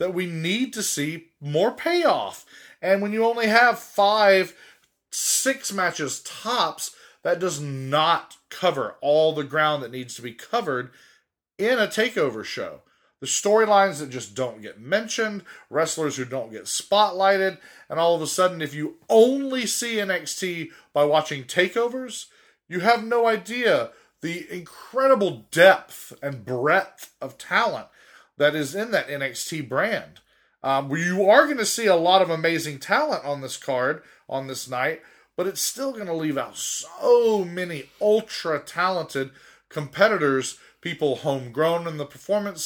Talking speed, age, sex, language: 150 wpm, 30-49, male, English